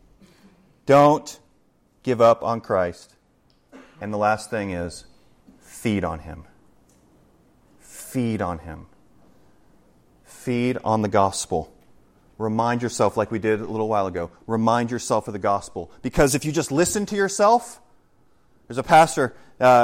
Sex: male